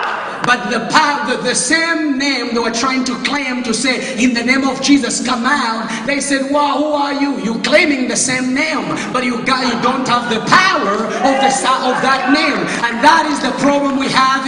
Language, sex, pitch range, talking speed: English, male, 260-295 Hz, 205 wpm